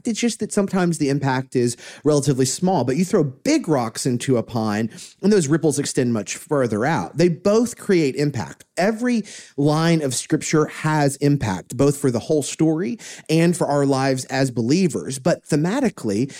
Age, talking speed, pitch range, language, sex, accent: 30-49, 170 wpm, 125-170 Hz, English, male, American